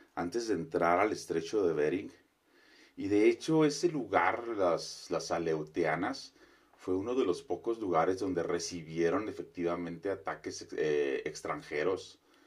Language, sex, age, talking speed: Spanish, male, 40-59, 130 wpm